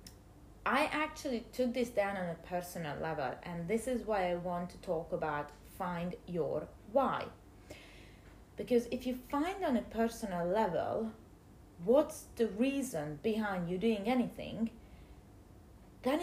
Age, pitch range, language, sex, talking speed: 30-49, 175-235 Hz, English, female, 135 wpm